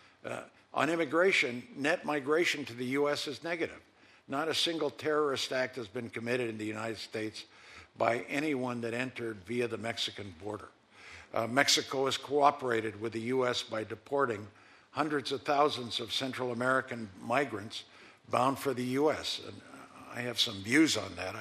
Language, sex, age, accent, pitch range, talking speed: English, male, 60-79, American, 115-150 Hz, 160 wpm